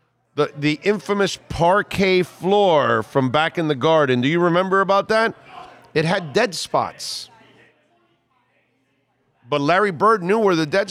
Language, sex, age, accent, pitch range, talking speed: English, male, 40-59, American, 135-190 Hz, 145 wpm